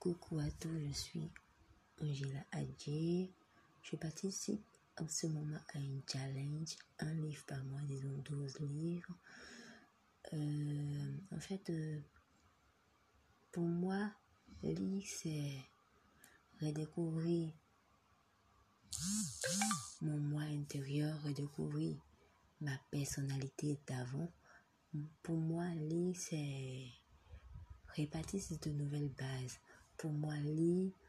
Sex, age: female, 30-49